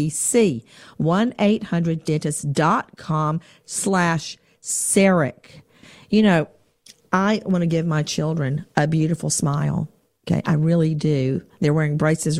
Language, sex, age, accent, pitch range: English, female, 50-69, American, 150-185 Hz